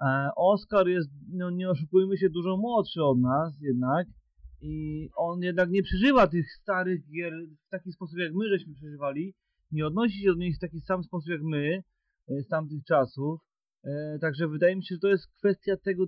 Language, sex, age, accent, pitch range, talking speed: Polish, male, 30-49, native, 150-180 Hz, 185 wpm